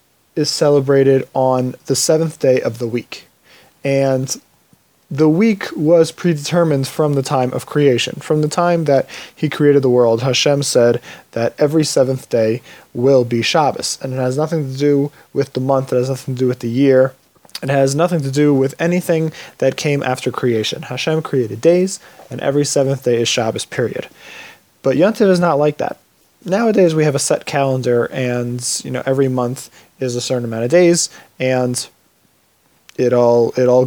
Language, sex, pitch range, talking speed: English, male, 125-155 Hz, 180 wpm